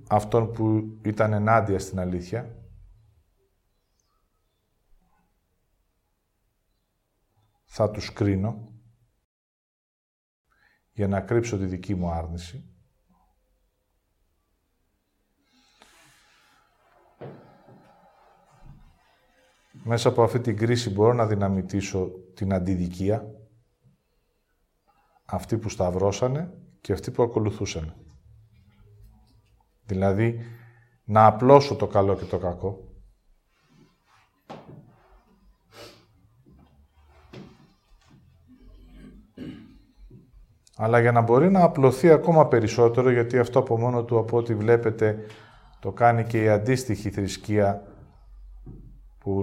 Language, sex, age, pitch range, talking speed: English, male, 50-69, 95-115 Hz, 80 wpm